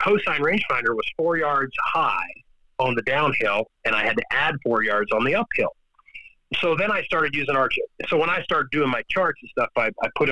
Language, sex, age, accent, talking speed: English, male, 40-59, American, 215 wpm